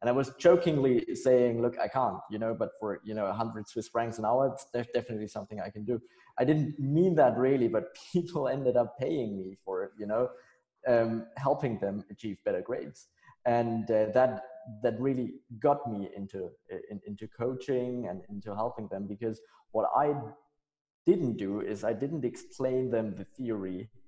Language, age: English, 20-39